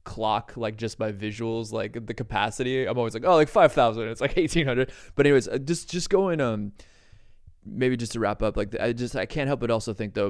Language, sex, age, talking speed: English, male, 20-39, 225 wpm